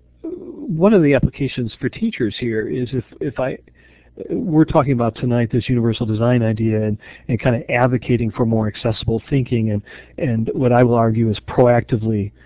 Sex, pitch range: male, 110-130 Hz